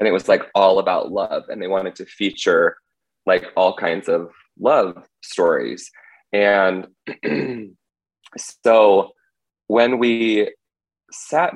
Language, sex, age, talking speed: English, male, 20-39, 120 wpm